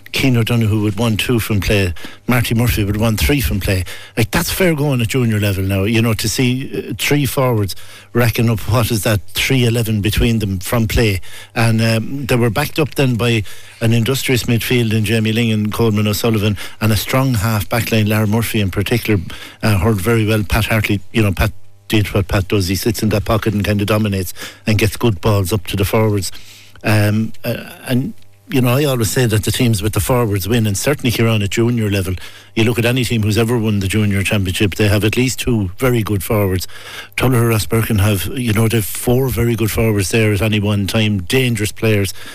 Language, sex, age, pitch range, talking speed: English, male, 60-79, 105-120 Hz, 215 wpm